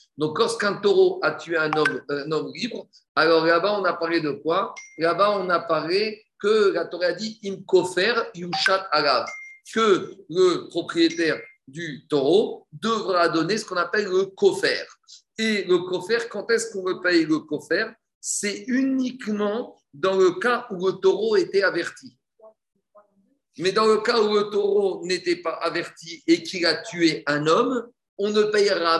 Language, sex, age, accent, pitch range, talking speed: French, male, 50-69, French, 165-235 Hz, 180 wpm